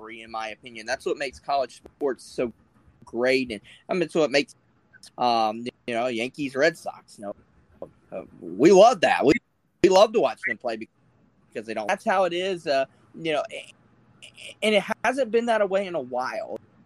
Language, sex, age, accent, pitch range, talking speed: English, male, 20-39, American, 120-170 Hz, 205 wpm